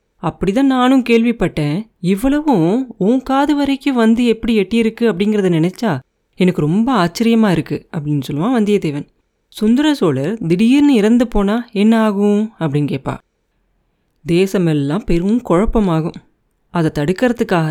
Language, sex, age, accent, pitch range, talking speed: Tamil, female, 30-49, native, 170-230 Hz, 110 wpm